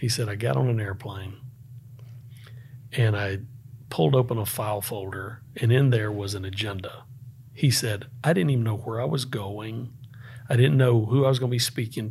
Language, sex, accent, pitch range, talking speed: English, male, American, 120-135 Hz, 200 wpm